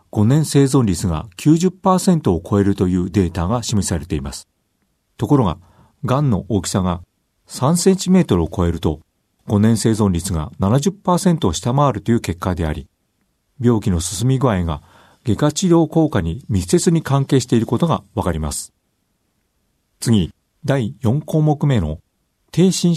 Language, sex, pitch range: Japanese, male, 90-140 Hz